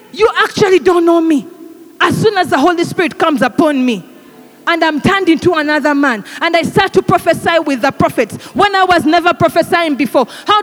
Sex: female